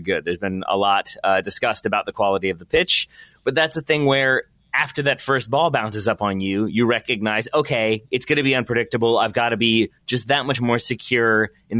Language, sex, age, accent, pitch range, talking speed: English, male, 30-49, American, 110-140 Hz, 225 wpm